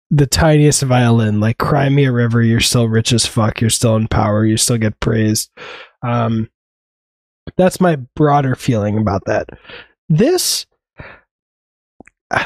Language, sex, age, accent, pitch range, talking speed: English, male, 20-39, American, 120-155 Hz, 145 wpm